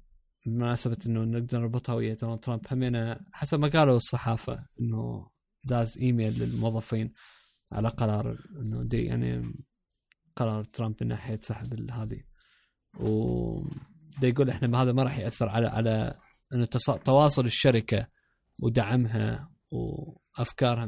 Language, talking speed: Arabic, 110 wpm